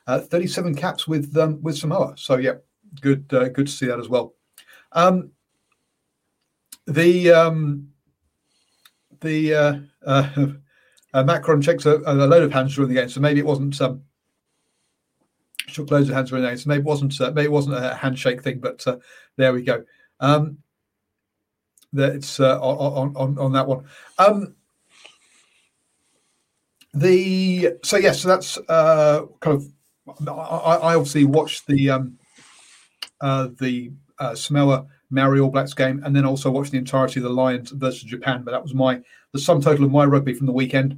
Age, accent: 40-59, British